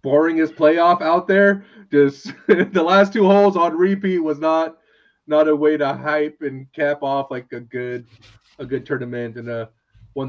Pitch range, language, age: 115-140 Hz, English, 20-39